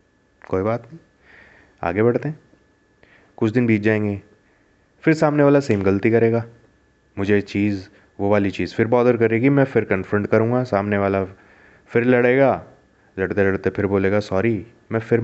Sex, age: male, 20-39